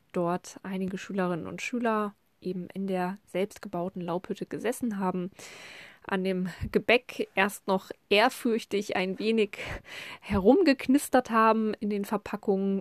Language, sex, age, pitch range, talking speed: German, female, 20-39, 180-215 Hz, 115 wpm